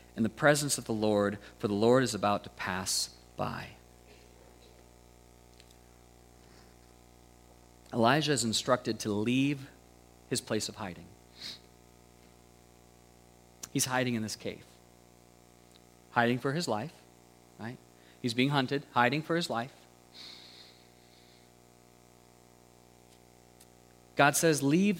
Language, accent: English, American